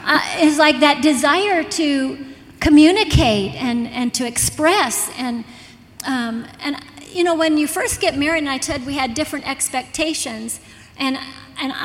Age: 40-59